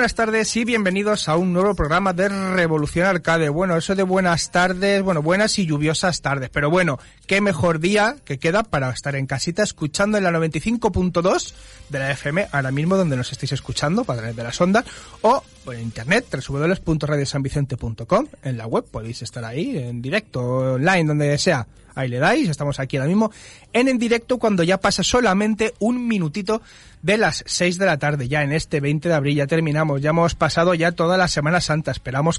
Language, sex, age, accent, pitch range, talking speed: Spanish, male, 30-49, Spanish, 145-190 Hz, 190 wpm